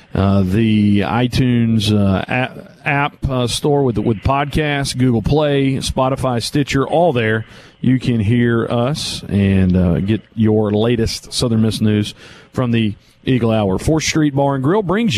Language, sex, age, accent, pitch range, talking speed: English, male, 40-59, American, 120-160 Hz, 155 wpm